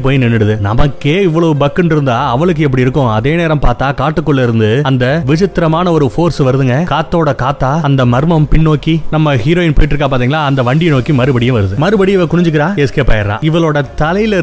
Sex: male